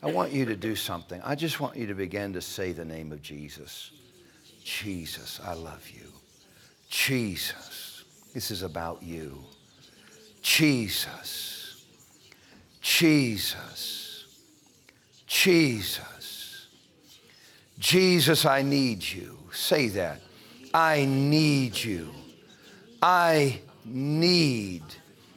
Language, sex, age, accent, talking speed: English, male, 60-79, American, 95 wpm